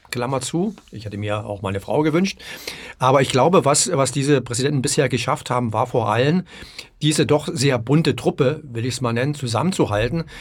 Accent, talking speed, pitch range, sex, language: German, 190 wpm, 120-145 Hz, male, German